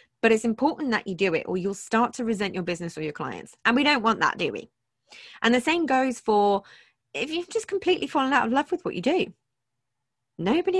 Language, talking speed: English, 235 wpm